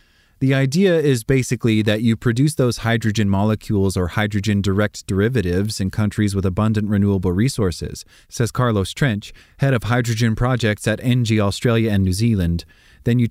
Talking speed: 160 wpm